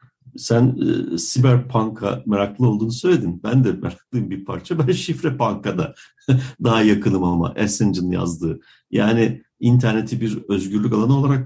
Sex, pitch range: male, 110-140 Hz